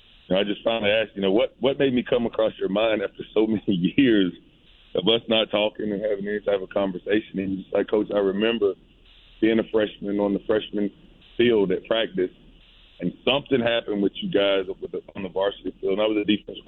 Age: 30-49